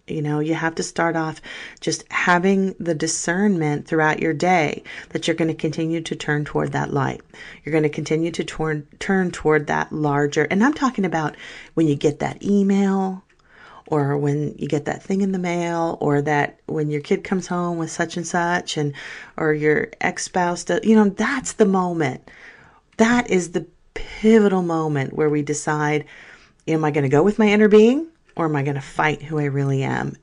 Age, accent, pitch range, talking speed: 40-59, American, 150-180 Hz, 195 wpm